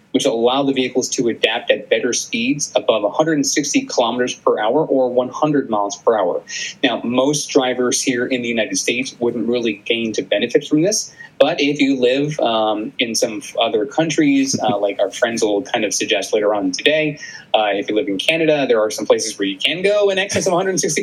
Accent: American